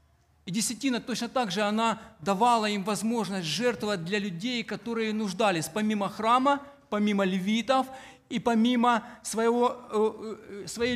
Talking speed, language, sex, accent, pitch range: 120 wpm, Ukrainian, male, native, 195-245 Hz